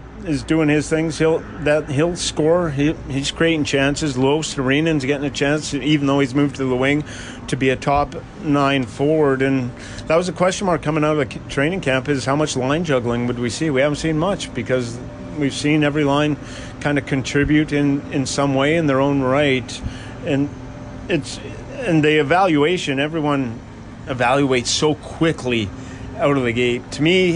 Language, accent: English, American